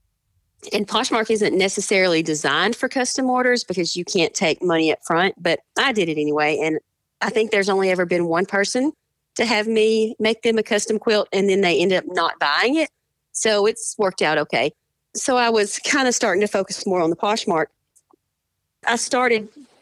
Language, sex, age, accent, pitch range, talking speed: English, female, 40-59, American, 175-225 Hz, 195 wpm